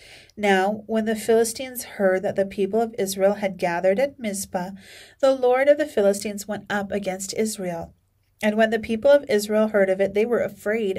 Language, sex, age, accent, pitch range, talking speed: English, female, 40-59, American, 190-230 Hz, 190 wpm